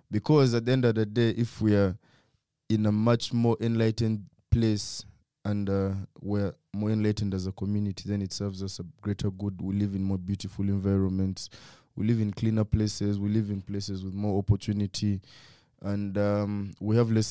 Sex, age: male, 20-39